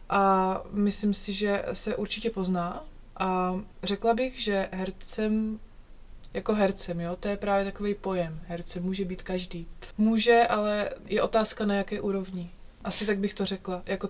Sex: female